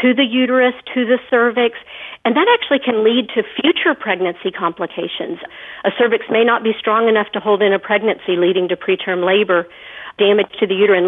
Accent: American